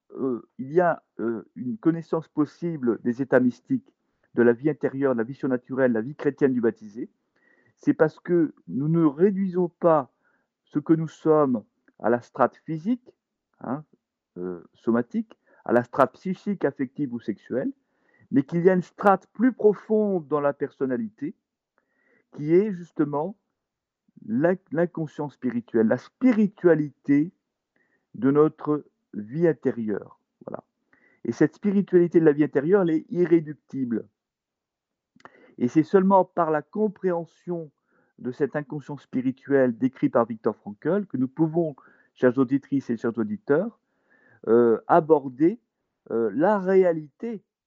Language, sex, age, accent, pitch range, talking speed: French, male, 50-69, French, 135-195 Hz, 140 wpm